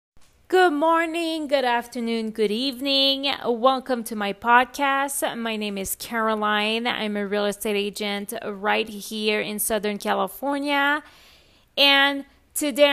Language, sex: English, female